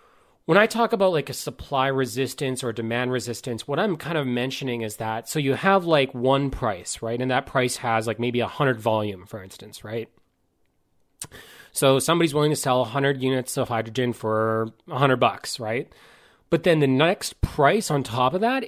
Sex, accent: male, American